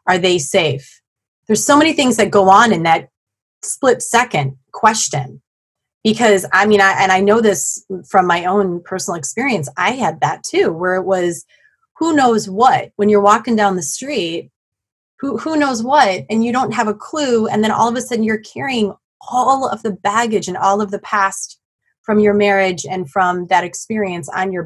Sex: female